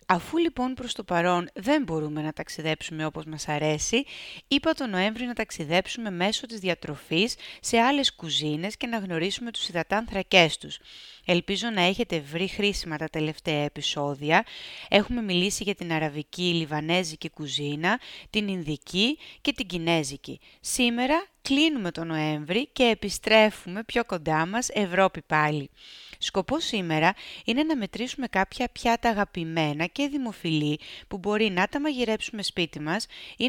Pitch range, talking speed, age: 165-230 Hz, 140 wpm, 30-49